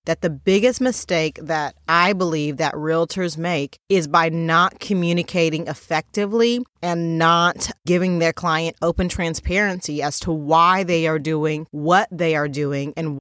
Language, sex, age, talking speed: English, female, 30-49, 150 wpm